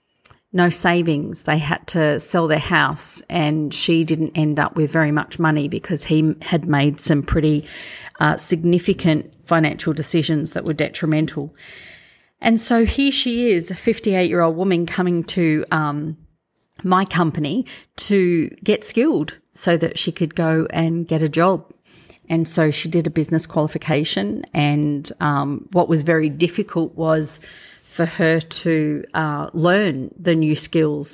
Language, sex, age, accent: English, female, 40-59, Australian